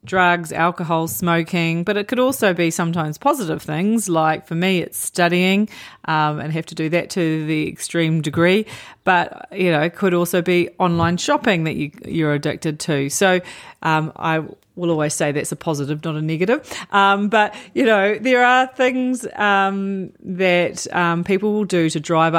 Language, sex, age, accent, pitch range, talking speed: English, female, 40-59, Australian, 155-200 Hz, 180 wpm